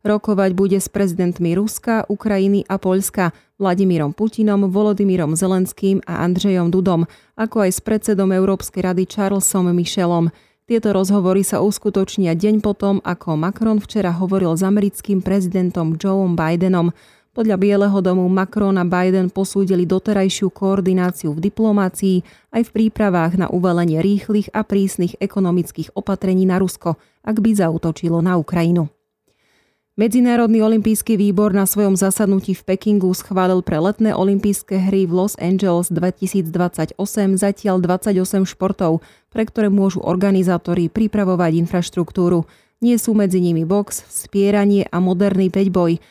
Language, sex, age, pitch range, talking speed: Slovak, female, 30-49, 180-205 Hz, 130 wpm